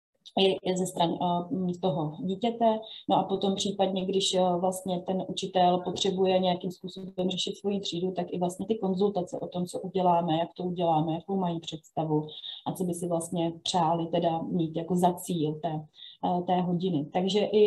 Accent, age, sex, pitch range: native, 30-49, female, 175-200 Hz